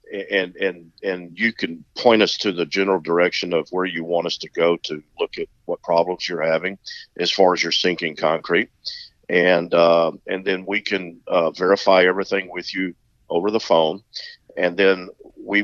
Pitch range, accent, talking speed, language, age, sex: 85-110 Hz, American, 185 wpm, English, 50-69, male